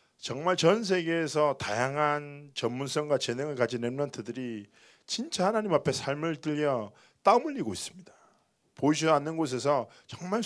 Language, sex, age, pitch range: Korean, male, 20-39, 115-150 Hz